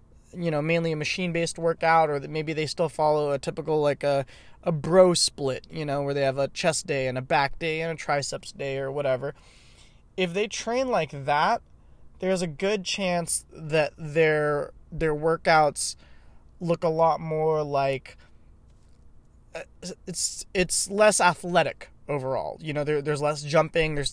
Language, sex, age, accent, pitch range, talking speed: English, male, 20-39, American, 145-175 Hz, 165 wpm